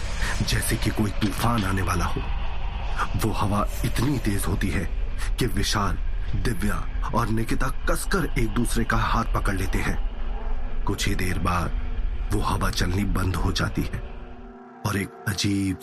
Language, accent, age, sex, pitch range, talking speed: Hindi, native, 30-49, male, 95-120 Hz, 150 wpm